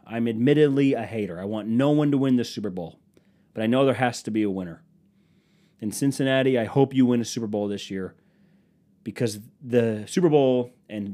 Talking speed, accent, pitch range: 205 wpm, American, 125-165 Hz